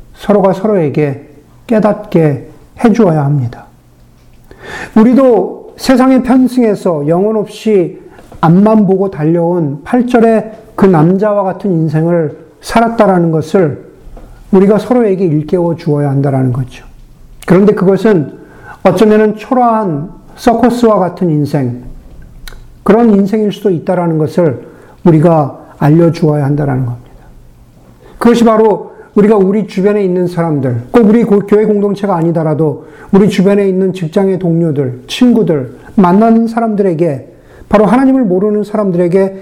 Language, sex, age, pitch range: Korean, male, 50-69, 150-210 Hz